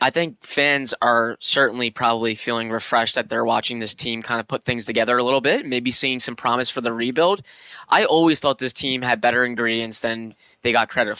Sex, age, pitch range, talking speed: male, 10-29, 115-135 Hz, 215 wpm